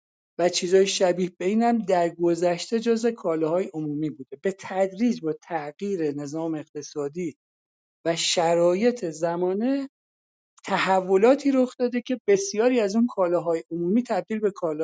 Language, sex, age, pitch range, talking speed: Persian, male, 50-69, 160-205 Hz, 125 wpm